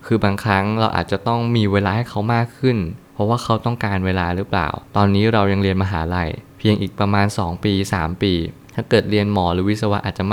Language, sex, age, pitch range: Thai, male, 20-39, 95-110 Hz